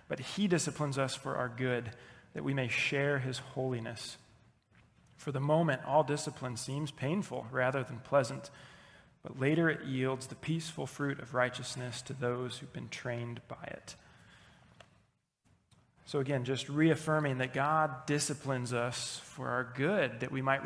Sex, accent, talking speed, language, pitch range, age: male, American, 155 wpm, English, 125-145 Hz, 30-49